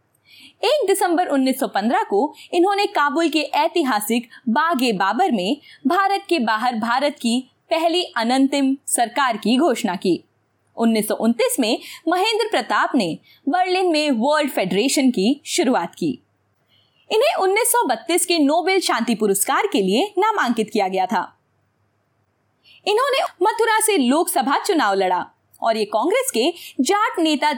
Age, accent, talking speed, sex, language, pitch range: 20-39, native, 125 wpm, female, Hindi, 225-370 Hz